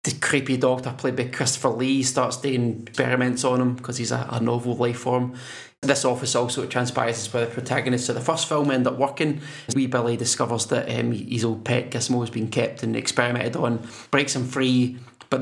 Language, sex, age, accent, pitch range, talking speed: English, male, 20-39, British, 120-130 Hz, 215 wpm